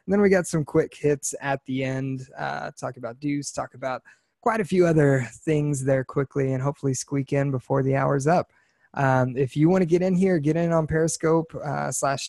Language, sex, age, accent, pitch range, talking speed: English, male, 20-39, American, 135-165 Hz, 220 wpm